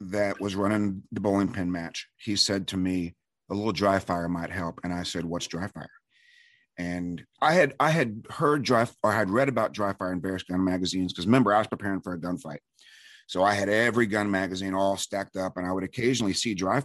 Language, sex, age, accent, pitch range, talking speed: English, male, 40-59, American, 90-110 Hz, 230 wpm